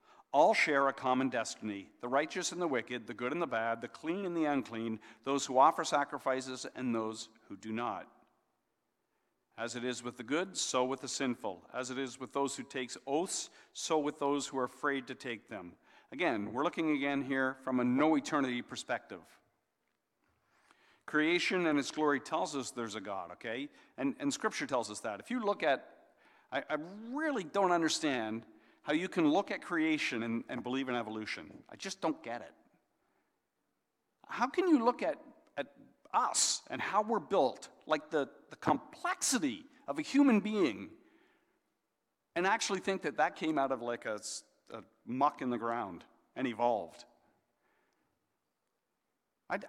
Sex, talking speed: male, 175 wpm